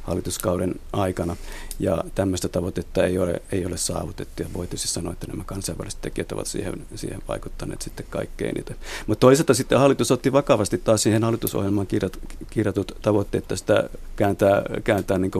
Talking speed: 145 wpm